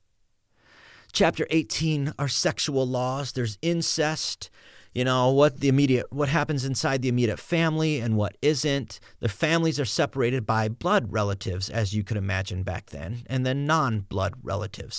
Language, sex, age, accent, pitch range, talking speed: English, male, 40-59, American, 100-135 Hz, 150 wpm